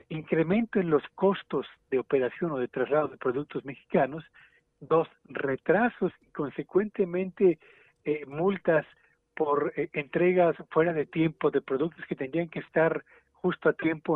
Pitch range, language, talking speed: 145-185 Hz, Spanish, 140 wpm